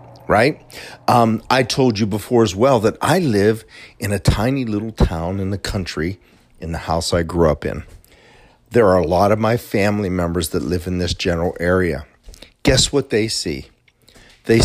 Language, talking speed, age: English, 185 wpm, 40-59